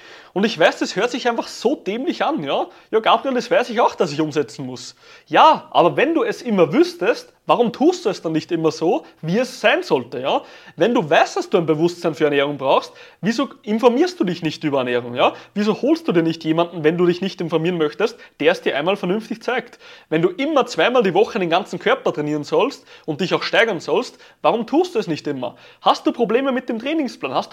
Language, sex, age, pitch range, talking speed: German, male, 30-49, 160-245 Hz, 230 wpm